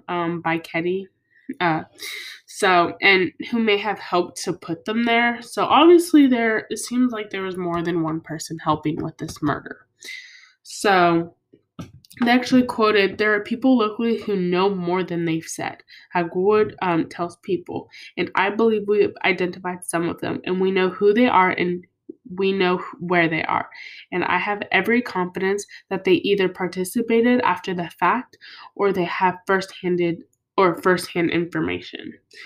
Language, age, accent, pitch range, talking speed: English, 10-29, American, 175-215 Hz, 165 wpm